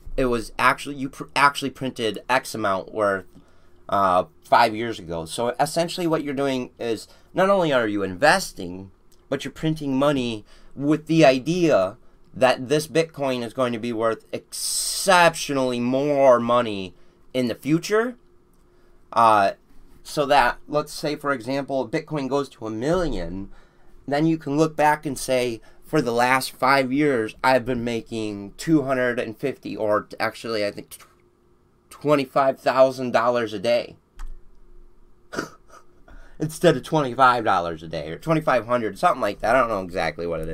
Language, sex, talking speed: English, male, 145 wpm